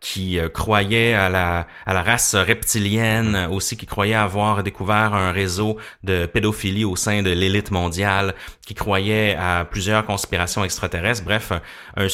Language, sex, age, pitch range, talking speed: French, male, 30-49, 95-120 Hz, 155 wpm